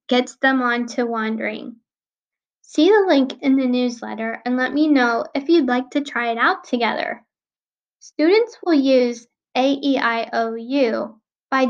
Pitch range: 240-295 Hz